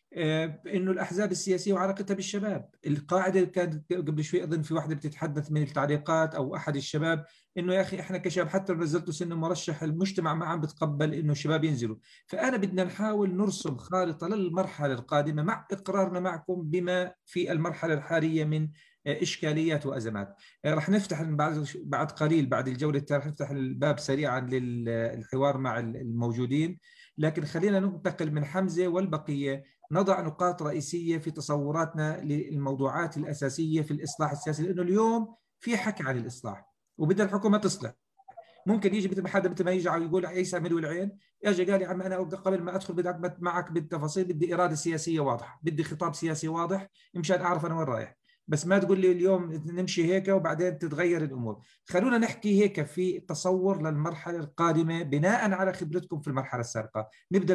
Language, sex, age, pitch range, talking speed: Arabic, male, 40-59, 150-185 Hz, 155 wpm